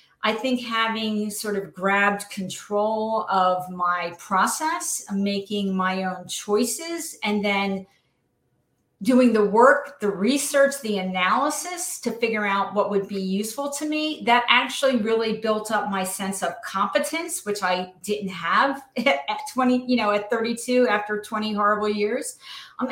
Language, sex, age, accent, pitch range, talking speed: English, female, 40-59, American, 195-255 Hz, 145 wpm